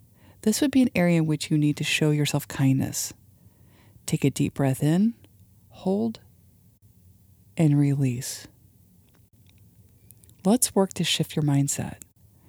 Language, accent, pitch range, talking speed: English, American, 105-165 Hz, 130 wpm